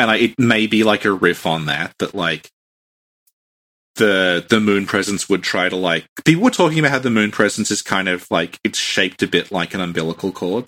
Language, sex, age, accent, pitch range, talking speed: English, male, 30-49, Australian, 90-115 Hz, 225 wpm